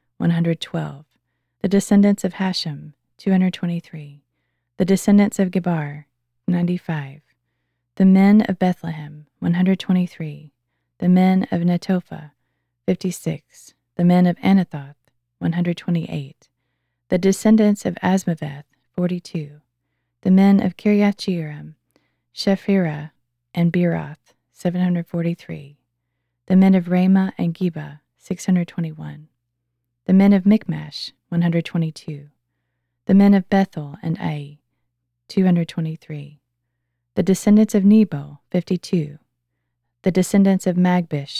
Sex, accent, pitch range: female, American, 145-185 Hz